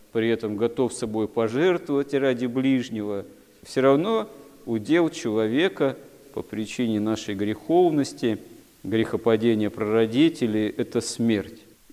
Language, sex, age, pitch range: Russian, male, 40-59, 105-125 Hz